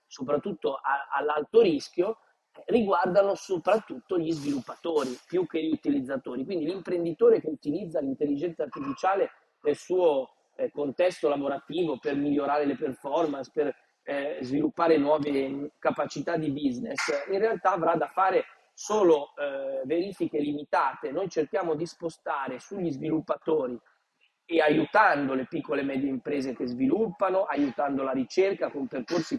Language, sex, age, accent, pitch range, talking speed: Italian, male, 30-49, native, 145-230 Hz, 125 wpm